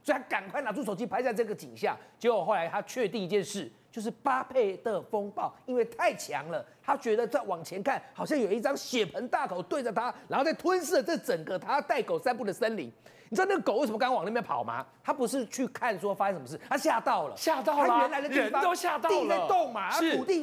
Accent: native